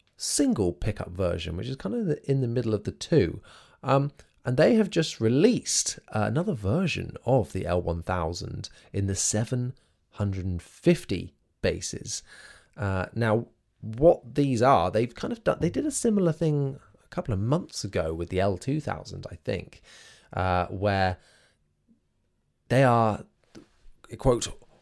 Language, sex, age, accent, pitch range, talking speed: English, male, 20-39, British, 95-130 Hz, 140 wpm